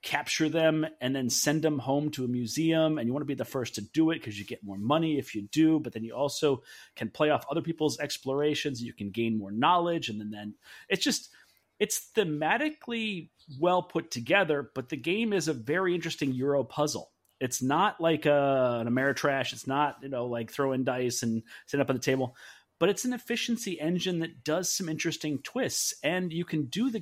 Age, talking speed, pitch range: 30-49, 215 wpm, 125-160 Hz